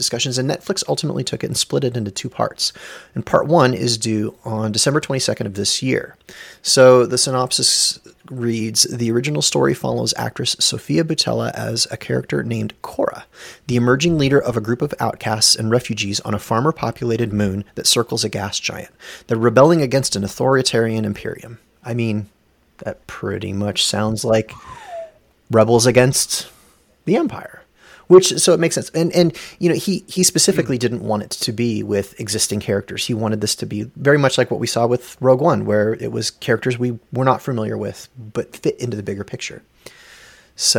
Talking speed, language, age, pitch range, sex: 185 wpm, English, 30-49, 110-140 Hz, male